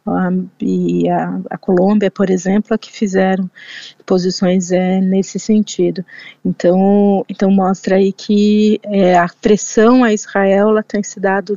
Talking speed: 145 wpm